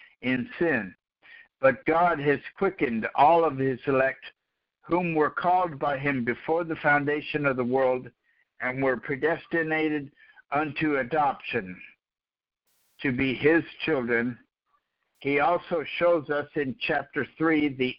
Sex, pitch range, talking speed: male, 135-155 Hz, 125 wpm